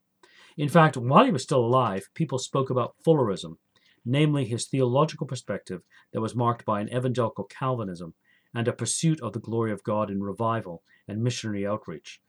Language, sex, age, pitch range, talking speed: English, male, 50-69, 100-125 Hz, 170 wpm